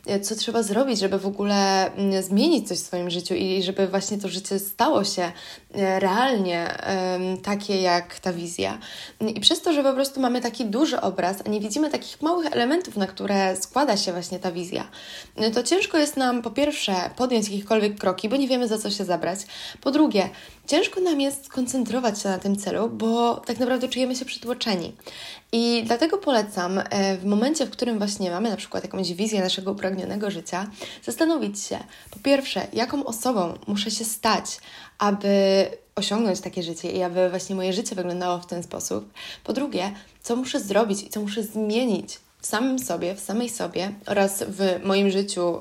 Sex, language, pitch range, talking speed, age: female, Polish, 190-240 Hz, 180 wpm, 20-39